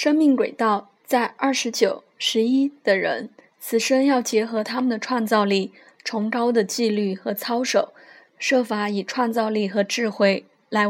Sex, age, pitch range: female, 20-39, 210-260 Hz